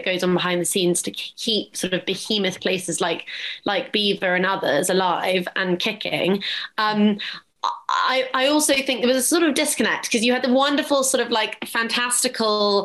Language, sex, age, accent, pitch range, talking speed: English, female, 20-39, British, 185-235 Hz, 185 wpm